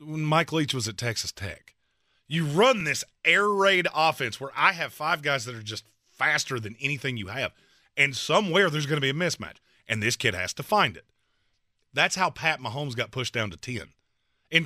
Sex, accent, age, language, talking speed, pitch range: male, American, 30-49, English, 210 wpm, 115-170 Hz